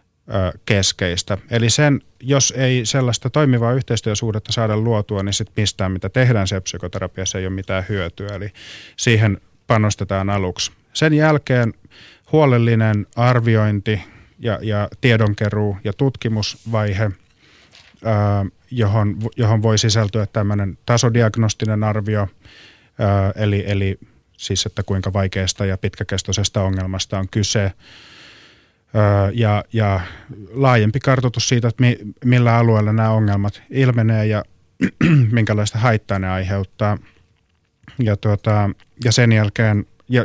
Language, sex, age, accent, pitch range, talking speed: Finnish, male, 30-49, native, 100-115 Hz, 110 wpm